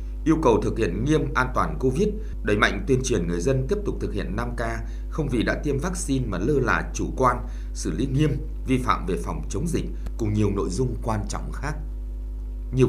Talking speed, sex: 215 wpm, male